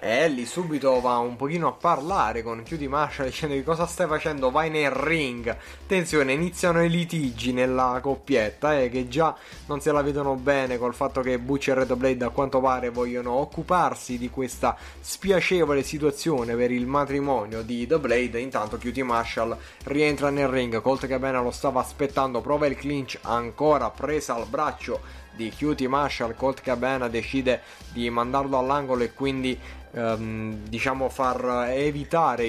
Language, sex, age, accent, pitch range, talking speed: Italian, male, 20-39, native, 125-145 Hz, 165 wpm